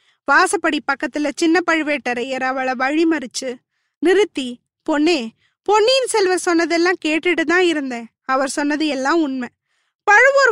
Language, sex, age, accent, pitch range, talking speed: Tamil, female, 20-39, native, 290-385 Hz, 110 wpm